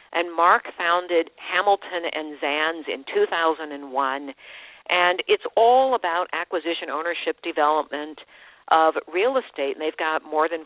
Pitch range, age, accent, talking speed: 160-250 Hz, 50-69, American, 130 wpm